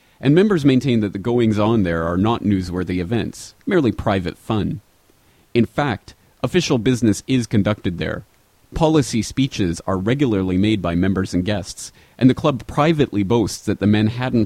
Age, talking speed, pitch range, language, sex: 30-49, 160 wpm, 95-130 Hz, English, male